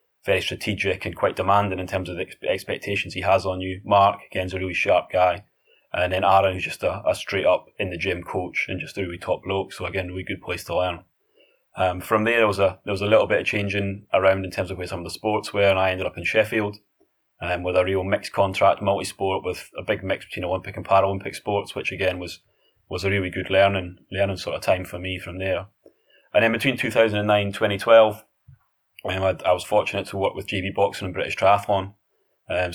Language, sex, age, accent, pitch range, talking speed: English, male, 20-39, British, 95-100 Hz, 230 wpm